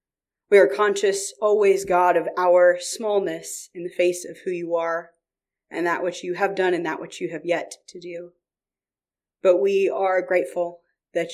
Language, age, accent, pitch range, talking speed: English, 30-49, American, 170-215 Hz, 180 wpm